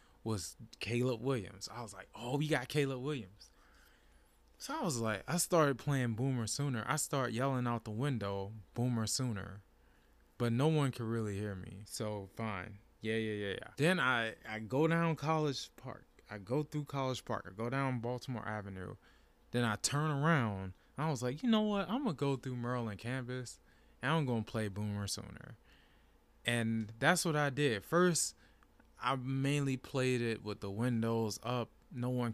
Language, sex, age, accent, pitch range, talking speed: English, male, 20-39, American, 105-135 Hz, 180 wpm